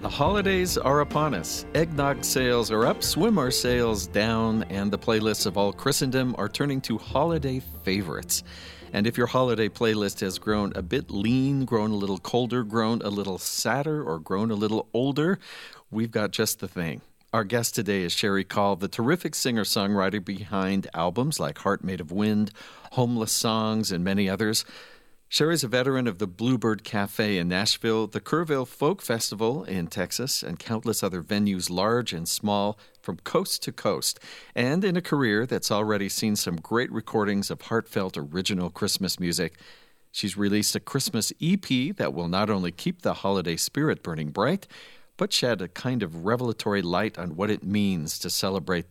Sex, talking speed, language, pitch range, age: male, 175 wpm, English, 95-120 Hz, 50-69